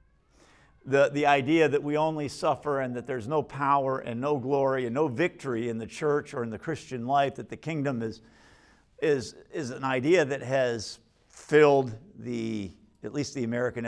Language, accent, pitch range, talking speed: English, American, 120-160 Hz, 180 wpm